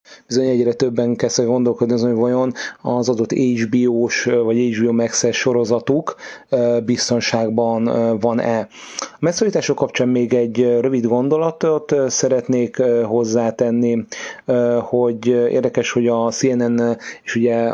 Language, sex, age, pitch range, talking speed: Hungarian, male, 30-49, 115-125 Hz, 115 wpm